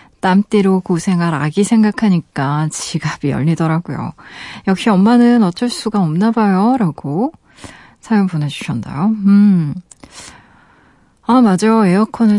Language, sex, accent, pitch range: Korean, female, native, 170-220 Hz